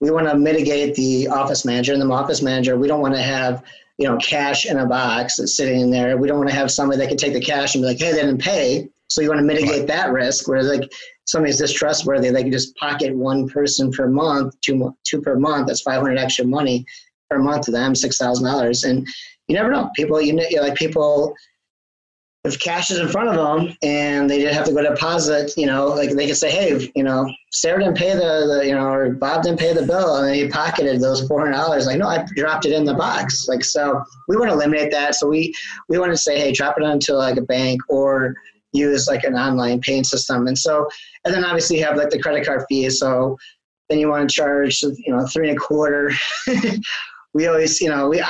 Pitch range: 130-150 Hz